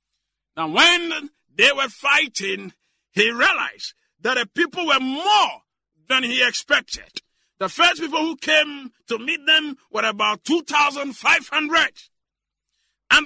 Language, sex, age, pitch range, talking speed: English, male, 50-69, 230-325 Hz, 120 wpm